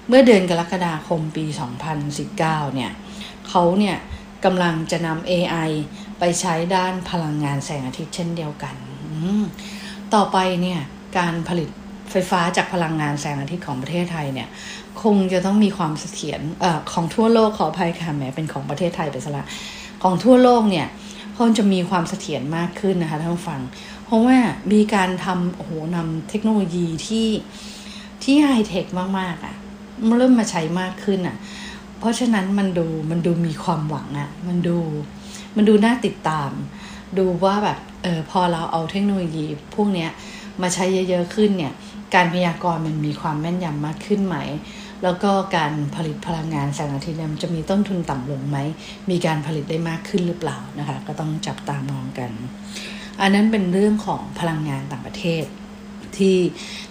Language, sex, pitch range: English, female, 160-205 Hz